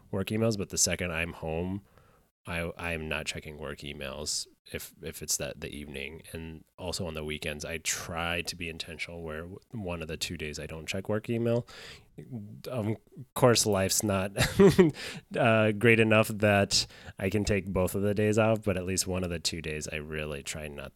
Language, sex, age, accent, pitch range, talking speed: English, male, 30-49, American, 80-105 Hz, 195 wpm